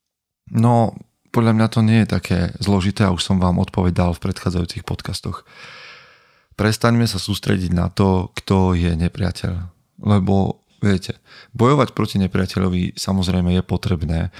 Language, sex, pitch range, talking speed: Slovak, male, 90-105 Hz, 135 wpm